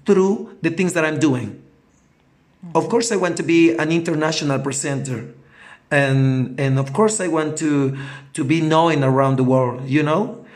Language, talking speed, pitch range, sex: German, 170 wpm, 140-170 Hz, male